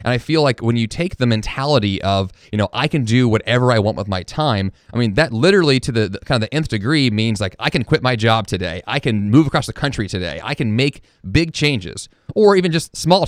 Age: 30-49